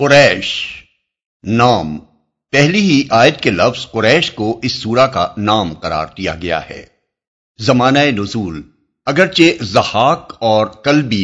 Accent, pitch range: Indian, 100-140 Hz